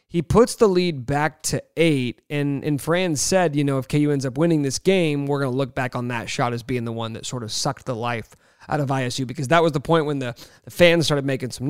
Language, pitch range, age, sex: English, 135-165 Hz, 30-49, male